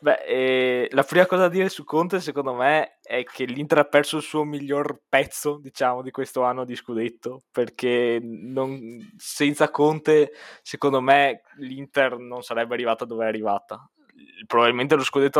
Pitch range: 115-145 Hz